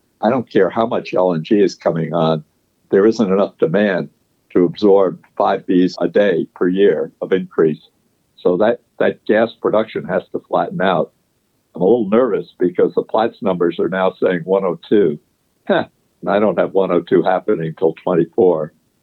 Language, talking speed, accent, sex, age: English, 165 wpm, American, male, 60-79